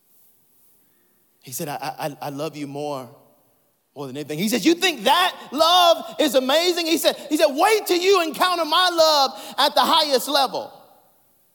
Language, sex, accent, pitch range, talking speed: English, male, American, 245-345 Hz, 170 wpm